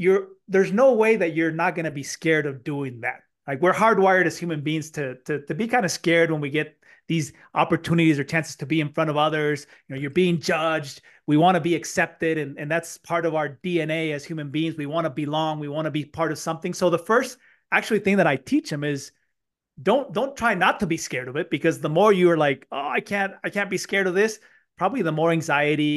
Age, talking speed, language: 30-49, 250 wpm, English